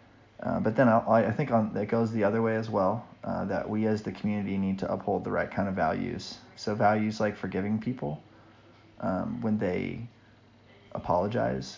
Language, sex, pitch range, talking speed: English, male, 100-110 Hz, 190 wpm